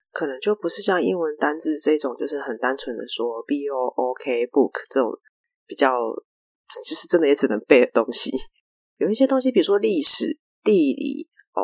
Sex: female